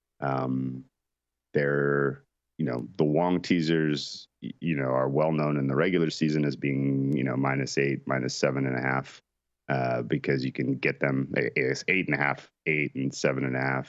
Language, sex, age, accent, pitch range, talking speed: English, male, 30-49, American, 65-80 Hz, 190 wpm